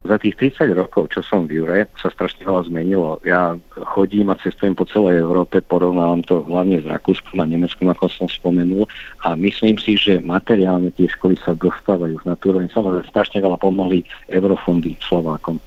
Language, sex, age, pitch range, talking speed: Slovak, male, 50-69, 90-100 Hz, 180 wpm